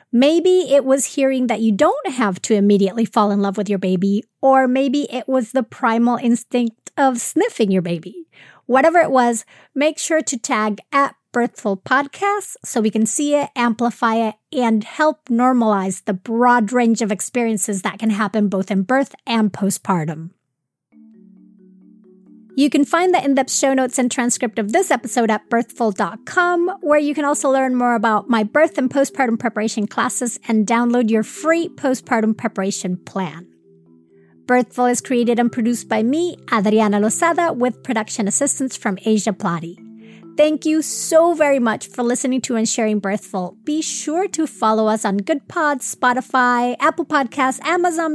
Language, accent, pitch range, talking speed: English, American, 215-275 Hz, 165 wpm